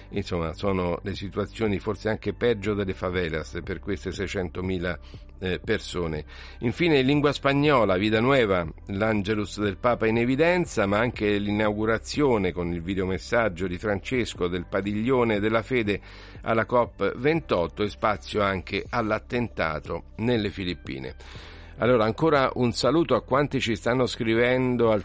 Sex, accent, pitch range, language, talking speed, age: male, native, 95-115 Hz, Italian, 125 wpm, 50-69